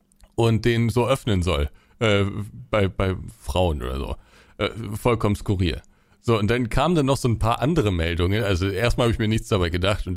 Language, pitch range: German, 110-180 Hz